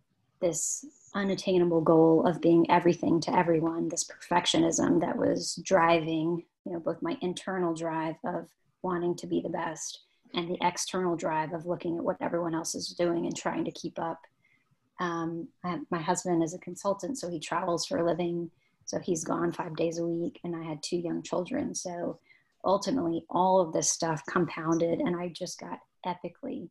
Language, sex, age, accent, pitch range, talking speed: English, female, 30-49, American, 165-180 Hz, 175 wpm